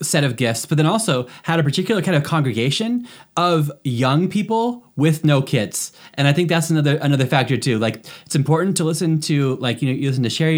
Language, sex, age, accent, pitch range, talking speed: English, male, 20-39, American, 125-160 Hz, 220 wpm